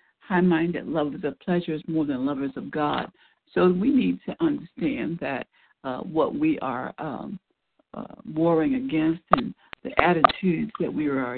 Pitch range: 165-250 Hz